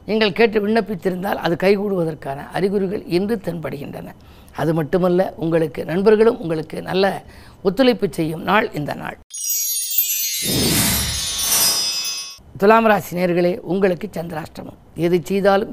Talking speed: 95 wpm